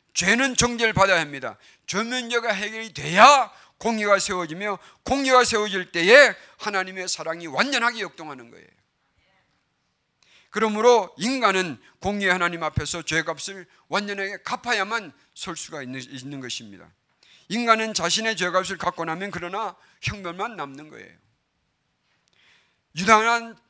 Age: 40-59